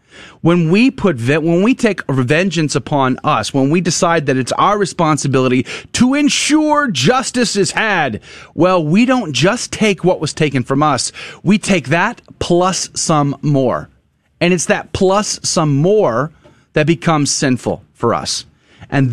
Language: English